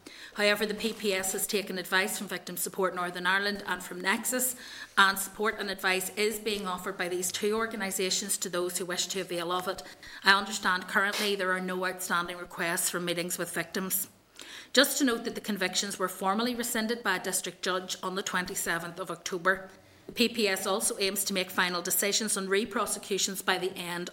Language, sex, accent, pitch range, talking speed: English, female, Irish, 185-205 Hz, 185 wpm